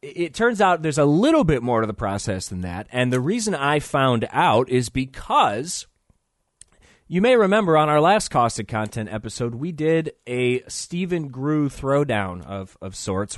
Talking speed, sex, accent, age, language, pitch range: 175 wpm, male, American, 30-49, English, 115-160 Hz